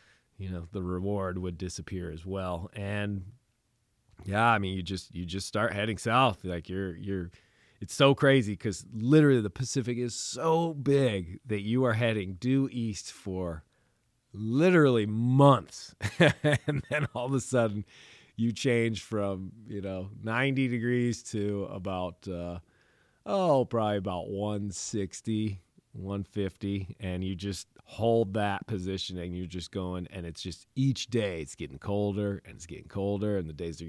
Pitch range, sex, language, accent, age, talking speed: 95-120 Hz, male, English, American, 30-49, 155 wpm